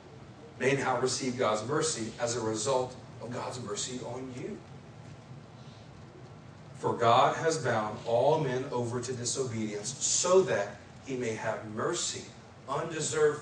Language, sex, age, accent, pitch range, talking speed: English, male, 40-59, American, 120-140 Hz, 130 wpm